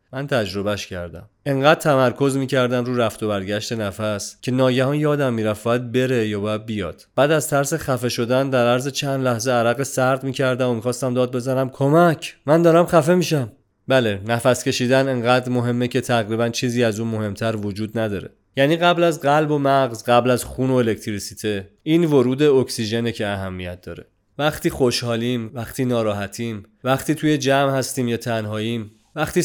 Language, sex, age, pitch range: Persian, male, 30-49, 105-130 Hz